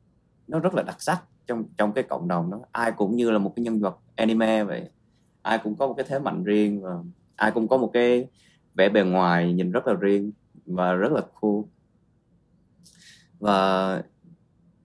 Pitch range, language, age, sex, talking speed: 90-110 Hz, Vietnamese, 20-39, male, 190 wpm